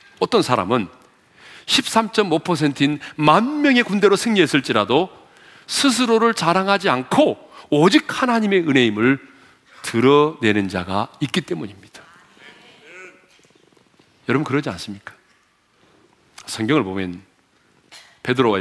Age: 40-59